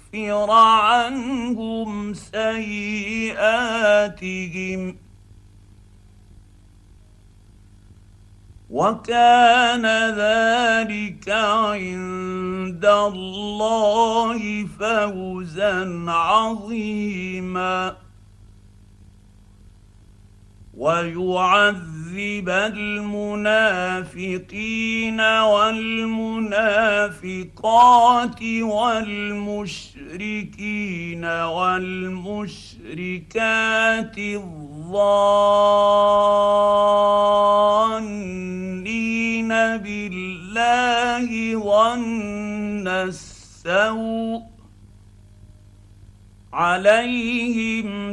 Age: 50-69